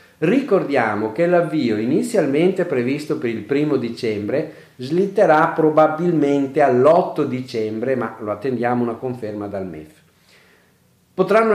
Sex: male